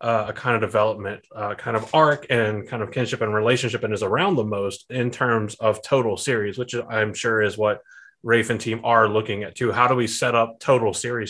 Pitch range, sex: 105-120 Hz, male